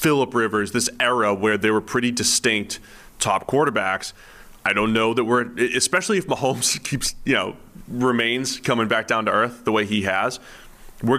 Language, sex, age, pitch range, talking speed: English, male, 30-49, 100-125 Hz, 175 wpm